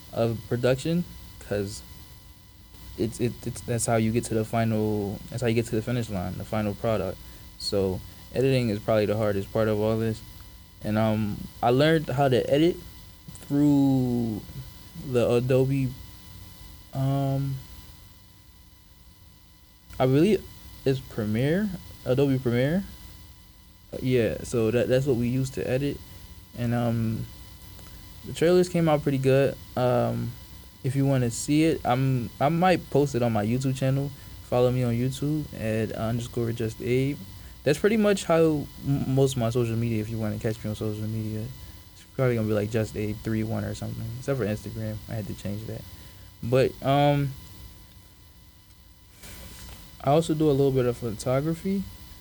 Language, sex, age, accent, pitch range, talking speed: English, male, 20-39, American, 100-130 Hz, 160 wpm